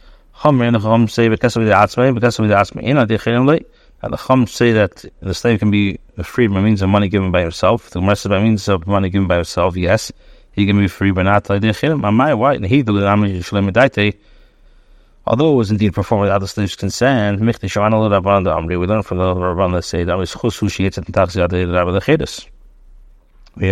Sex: male